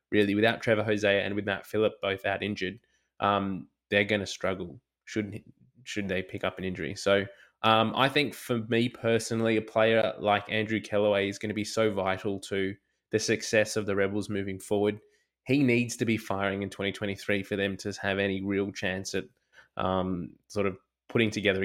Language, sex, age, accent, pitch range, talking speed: English, male, 20-39, Australian, 100-115 Hz, 190 wpm